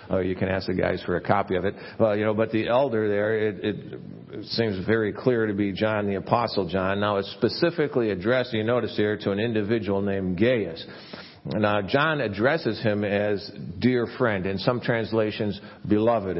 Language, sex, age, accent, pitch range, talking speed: English, male, 50-69, American, 105-135 Hz, 190 wpm